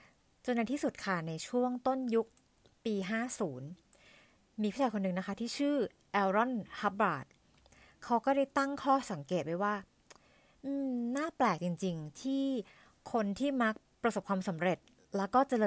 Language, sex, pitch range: Thai, female, 170-230 Hz